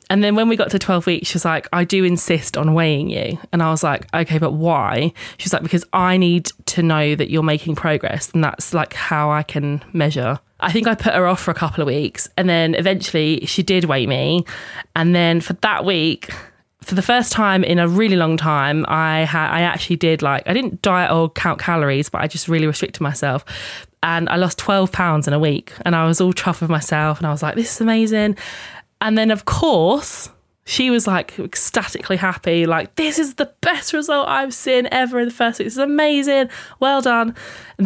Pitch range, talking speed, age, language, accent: 155-190 Hz, 225 wpm, 20-39, English, British